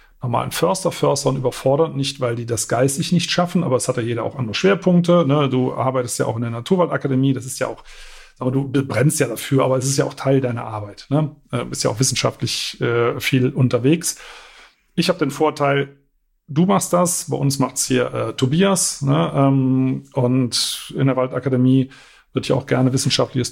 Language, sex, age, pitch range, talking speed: German, male, 40-59, 130-155 Hz, 195 wpm